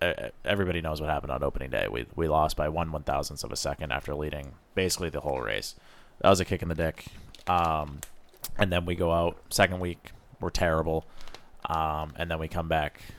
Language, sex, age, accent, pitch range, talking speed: English, male, 20-39, American, 80-95 Hz, 210 wpm